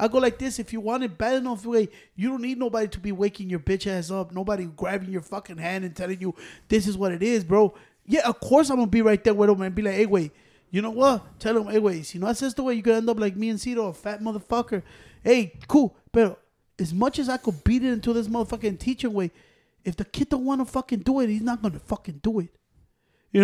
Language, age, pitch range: English, 20-39, 185-230 Hz